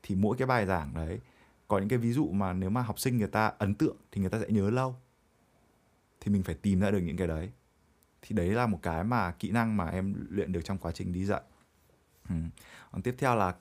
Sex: male